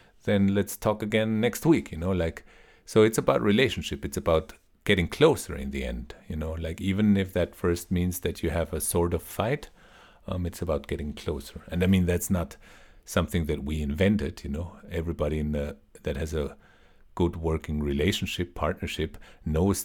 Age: 50-69